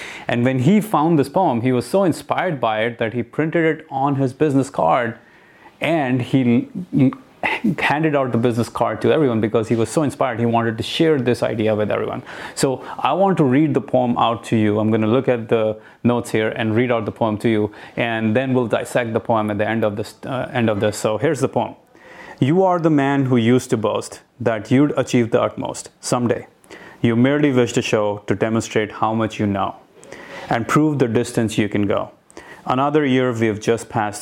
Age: 30-49